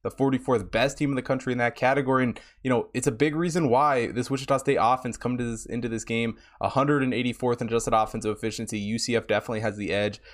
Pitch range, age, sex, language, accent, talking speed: 105-130 Hz, 20-39, male, English, American, 220 wpm